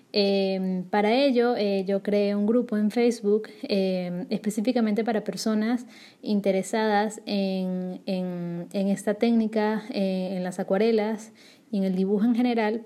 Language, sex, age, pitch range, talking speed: Spanish, female, 20-39, 195-225 Hz, 140 wpm